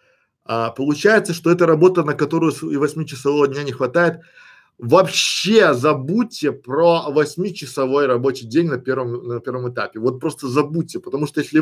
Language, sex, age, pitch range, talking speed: Russian, male, 20-39, 135-175 Hz, 155 wpm